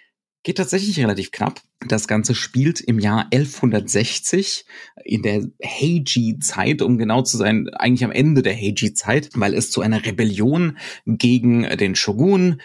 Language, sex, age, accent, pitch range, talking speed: German, male, 40-59, German, 110-130 Hz, 140 wpm